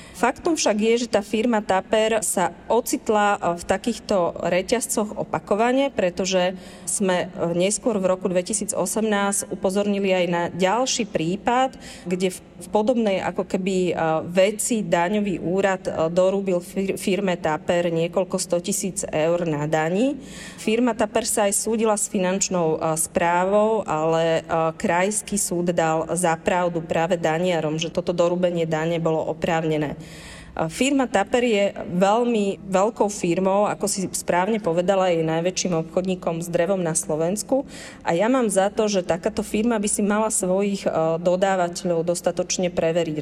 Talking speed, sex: 130 wpm, female